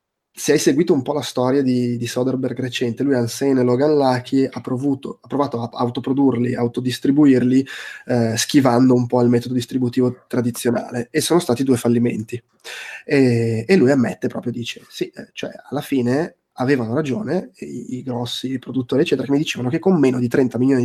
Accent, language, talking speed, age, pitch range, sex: native, Italian, 175 wpm, 20-39, 120-140 Hz, male